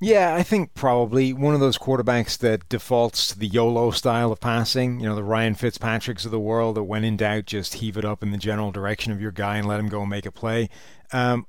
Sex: male